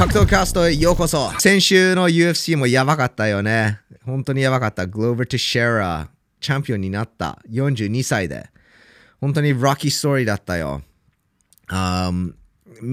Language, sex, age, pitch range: Japanese, male, 20-39, 95-135 Hz